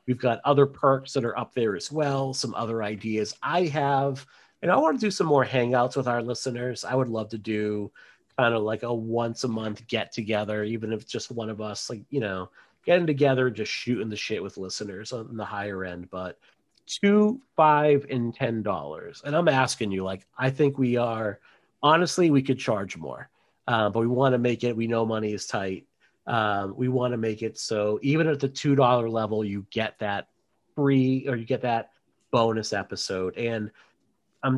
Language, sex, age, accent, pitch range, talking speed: English, male, 30-49, American, 110-135 Hz, 210 wpm